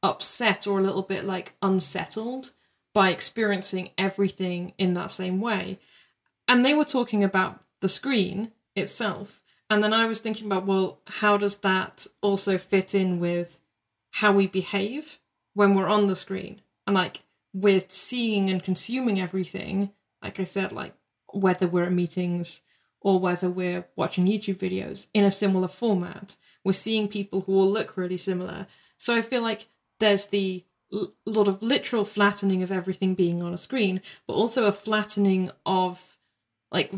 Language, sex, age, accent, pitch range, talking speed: English, female, 20-39, British, 185-215 Hz, 160 wpm